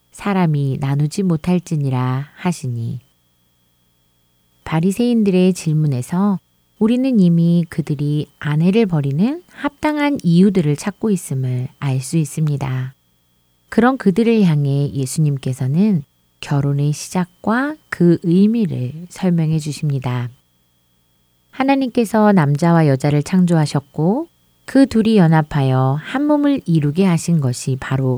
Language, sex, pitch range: Korean, female, 130-195 Hz